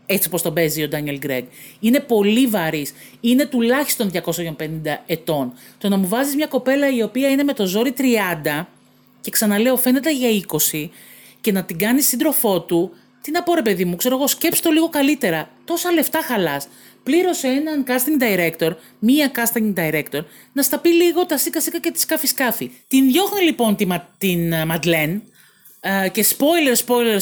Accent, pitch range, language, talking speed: native, 165-255 Hz, Greek, 180 wpm